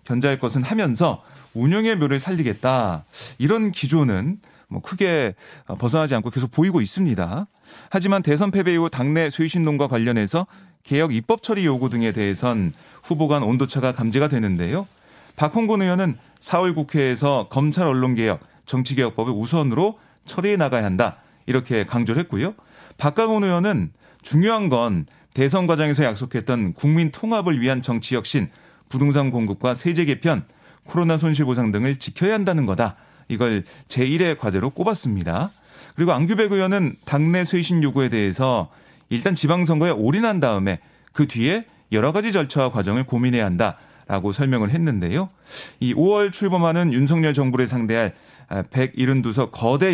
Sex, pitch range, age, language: male, 125-170 Hz, 30-49, Korean